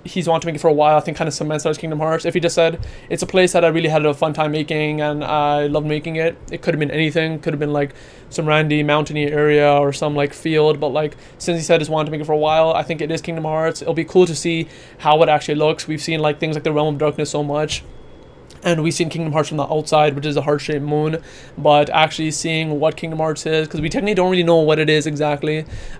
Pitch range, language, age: 150-165 Hz, English, 20-39